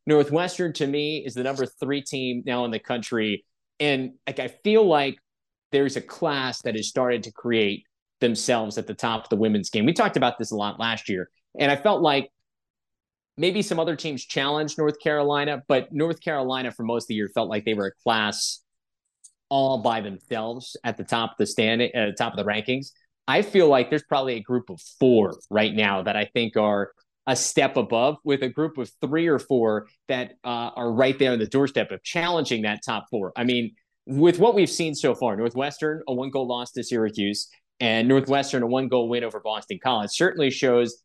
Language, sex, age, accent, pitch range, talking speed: English, male, 30-49, American, 115-145 Hz, 210 wpm